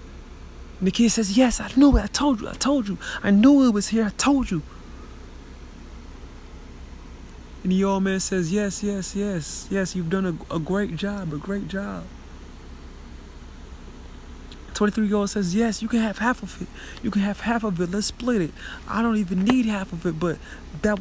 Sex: male